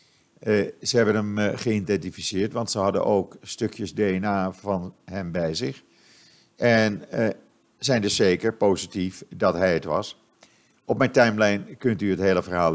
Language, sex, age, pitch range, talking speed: Dutch, male, 50-69, 95-115 Hz, 160 wpm